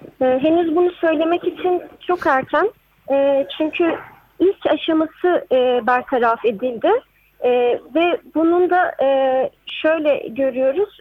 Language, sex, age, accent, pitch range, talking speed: Turkish, female, 40-59, native, 270-360 Hz, 115 wpm